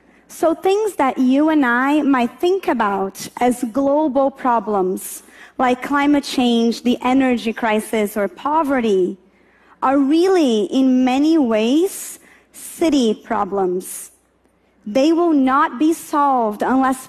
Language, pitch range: English, 230-300 Hz